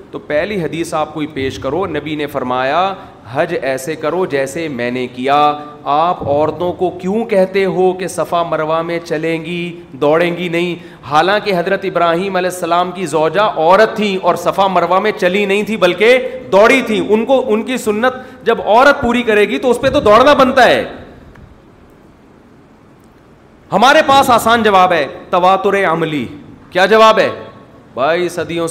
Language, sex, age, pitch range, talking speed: Urdu, male, 40-59, 150-205 Hz, 165 wpm